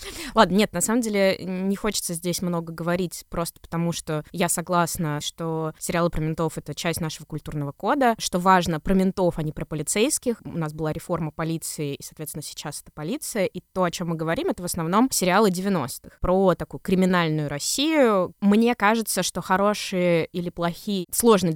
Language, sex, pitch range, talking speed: Russian, female, 170-205 Hz, 185 wpm